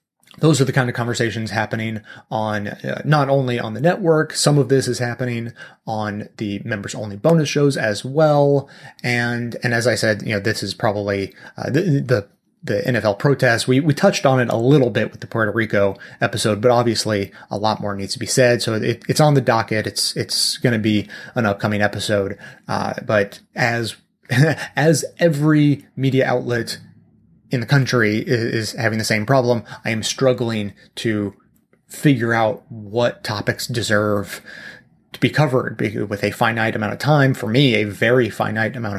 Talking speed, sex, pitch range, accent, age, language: 180 wpm, male, 105-130 Hz, American, 30-49, English